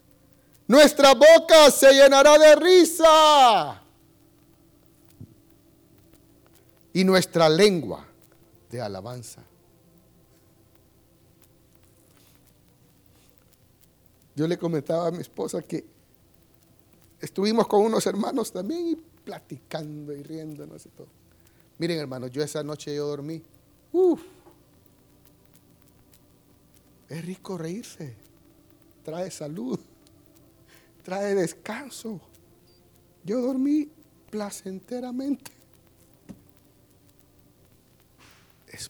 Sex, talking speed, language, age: male, 75 wpm, Spanish, 60-79